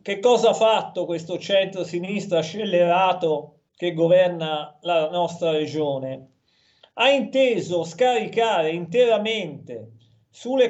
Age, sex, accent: 40-59, male, native